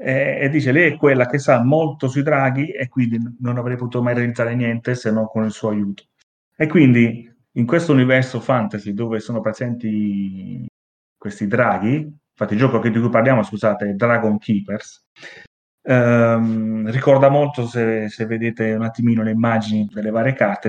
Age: 30-49